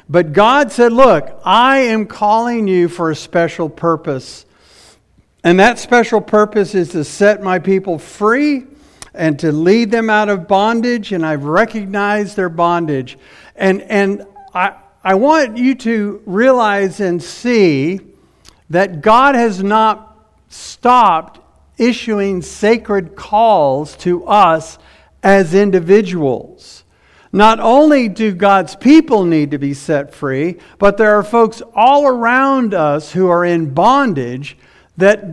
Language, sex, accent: English, male, American